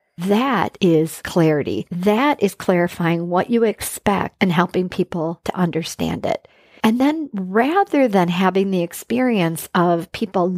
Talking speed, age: 135 wpm, 50-69